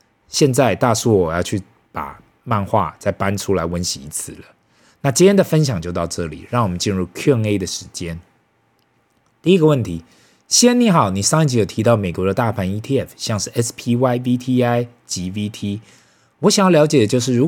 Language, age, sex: Chinese, 20-39, male